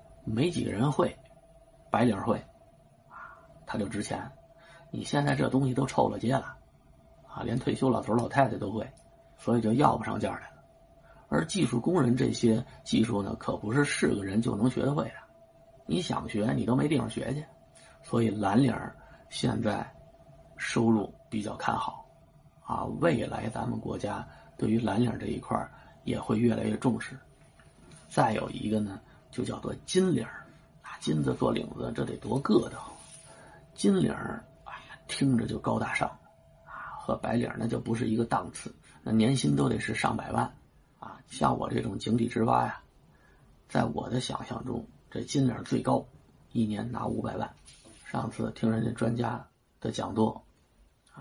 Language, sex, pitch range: Chinese, male, 110-130 Hz